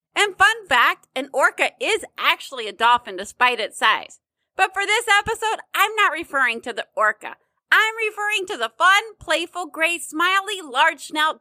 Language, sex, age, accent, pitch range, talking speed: English, female, 30-49, American, 315-435 Hz, 165 wpm